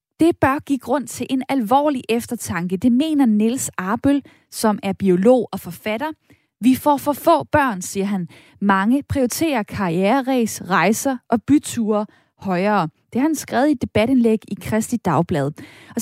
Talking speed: 155 wpm